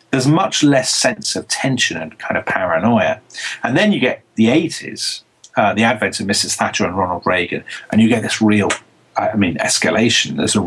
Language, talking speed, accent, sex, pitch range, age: English, 195 wpm, British, male, 105-125 Hz, 40-59